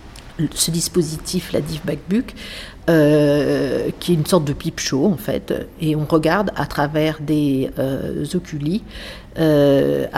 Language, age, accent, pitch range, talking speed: French, 50-69, French, 150-175 Hz, 140 wpm